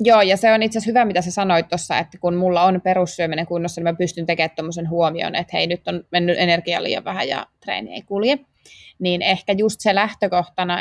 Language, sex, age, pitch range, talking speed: Finnish, female, 20-39, 170-200 Hz, 220 wpm